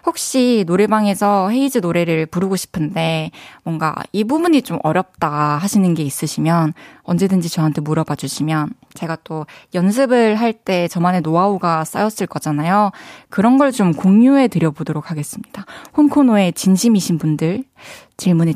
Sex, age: female, 20-39